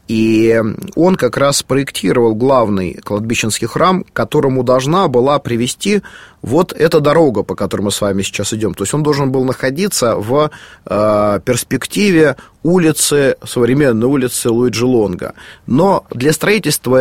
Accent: native